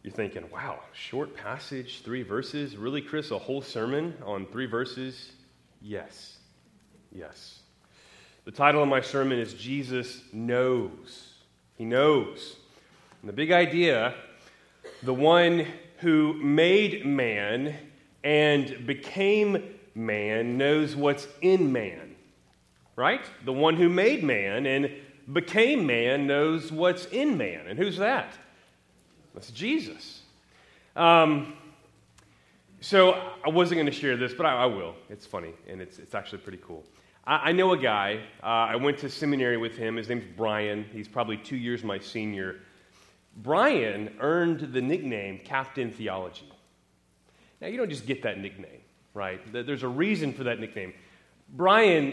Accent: American